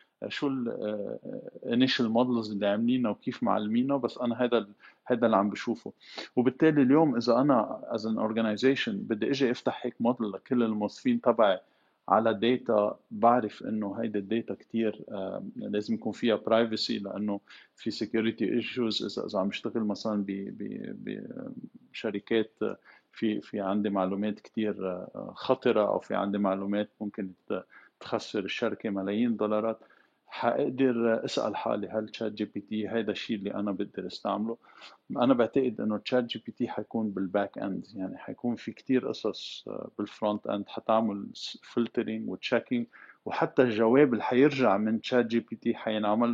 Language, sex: Arabic, male